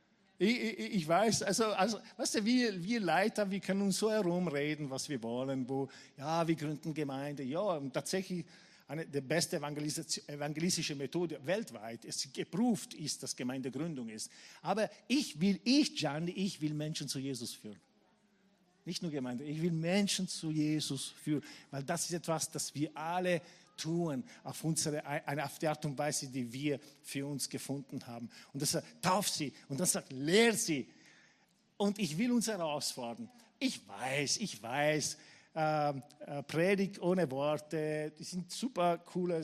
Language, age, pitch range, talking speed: German, 50-69, 145-190 Hz, 165 wpm